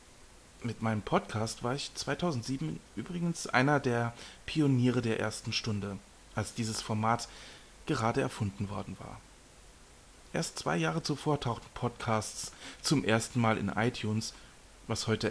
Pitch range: 100-125 Hz